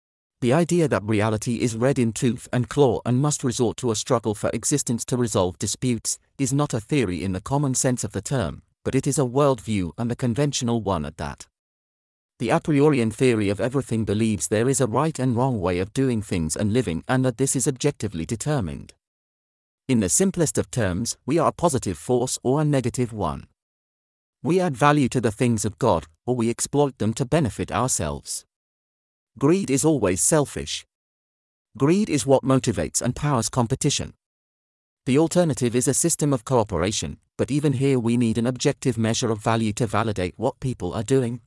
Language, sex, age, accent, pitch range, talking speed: English, male, 40-59, British, 105-140 Hz, 190 wpm